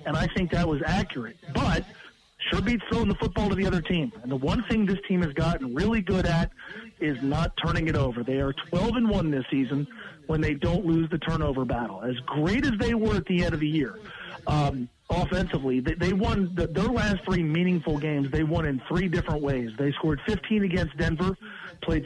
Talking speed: 215 wpm